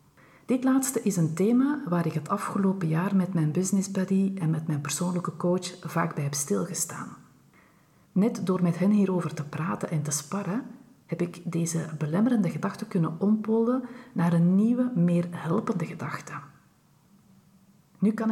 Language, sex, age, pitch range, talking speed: Dutch, female, 40-59, 160-195 Hz, 155 wpm